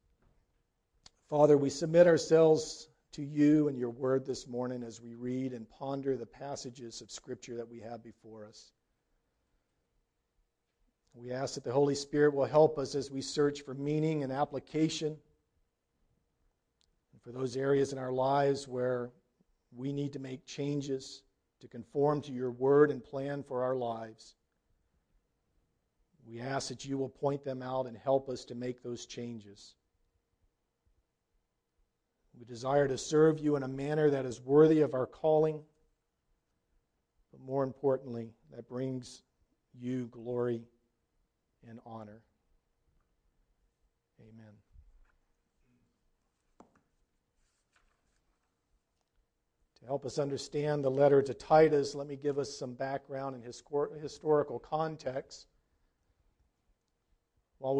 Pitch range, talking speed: 120-145 Hz, 125 wpm